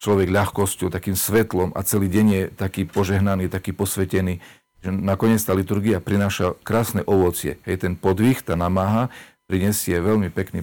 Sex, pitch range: male, 90-105 Hz